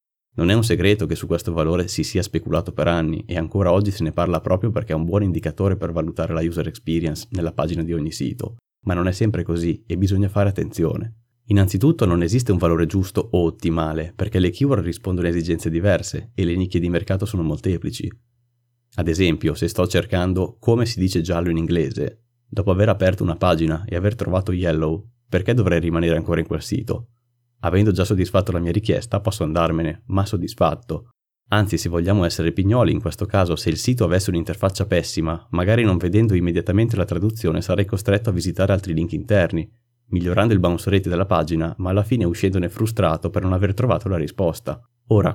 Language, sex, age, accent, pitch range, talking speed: Italian, male, 30-49, native, 85-105 Hz, 195 wpm